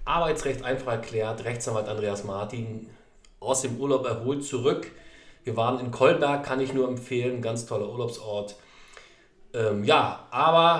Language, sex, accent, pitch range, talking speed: German, male, German, 115-135 Hz, 140 wpm